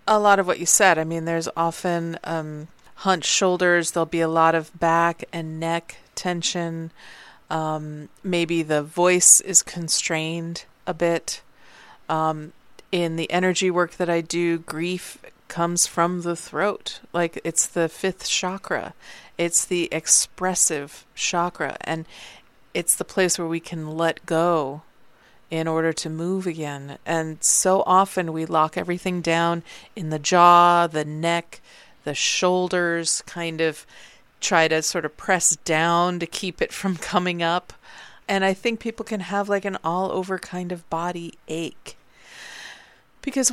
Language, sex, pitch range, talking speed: English, female, 165-190 Hz, 150 wpm